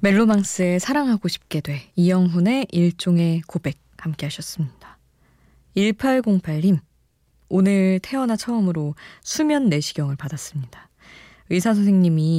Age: 20-39